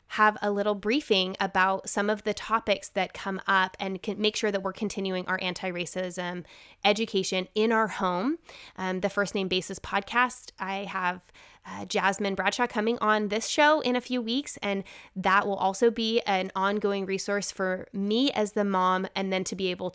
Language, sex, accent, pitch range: English, female, American, 185-215 Hz